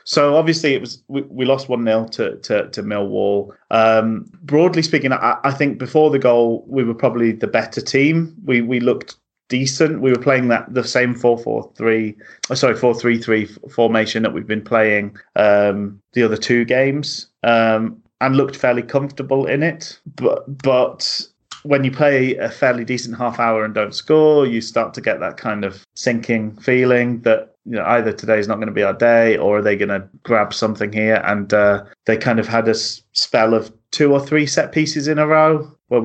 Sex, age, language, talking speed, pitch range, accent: male, 30-49, English, 200 wpm, 110-135 Hz, British